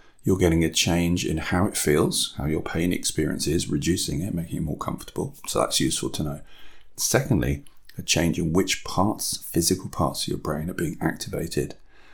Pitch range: 75-95 Hz